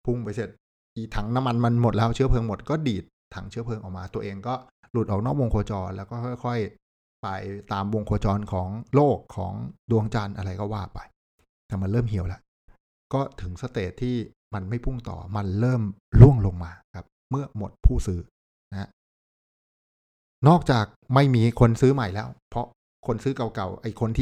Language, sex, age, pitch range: Thai, male, 60-79, 95-125 Hz